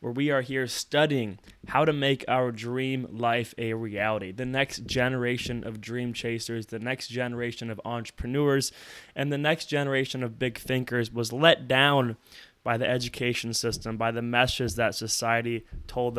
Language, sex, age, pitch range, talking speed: English, male, 20-39, 110-130 Hz, 165 wpm